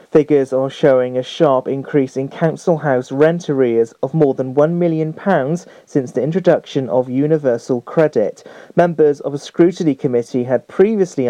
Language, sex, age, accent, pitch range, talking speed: English, male, 40-59, British, 130-165 Hz, 155 wpm